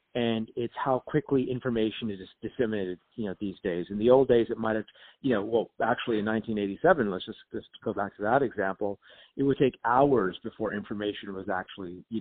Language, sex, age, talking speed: English, male, 40-59, 195 wpm